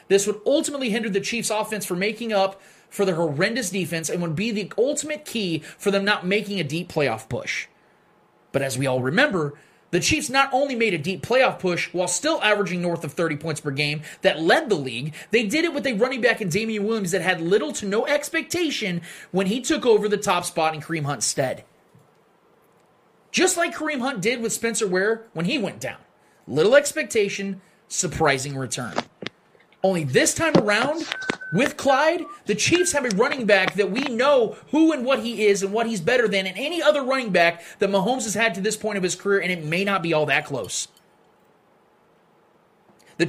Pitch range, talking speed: 180-250 Hz, 205 wpm